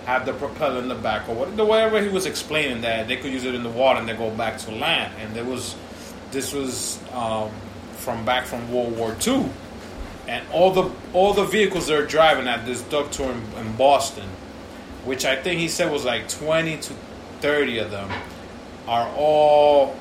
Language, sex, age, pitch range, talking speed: English, male, 30-49, 110-145 Hz, 200 wpm